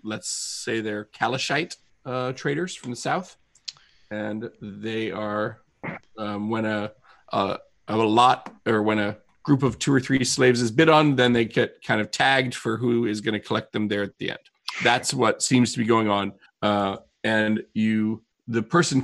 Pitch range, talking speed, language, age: 105-125 Hz, 185 wpm, English, 40-59